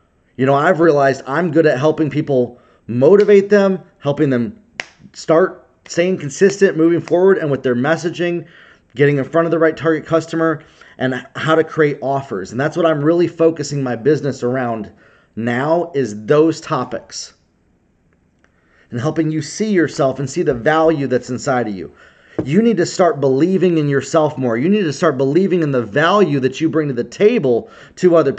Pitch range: 135-180 Hz